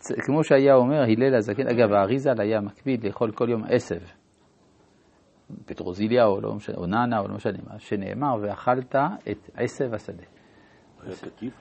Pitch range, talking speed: 105-145 Hz, 140 wpm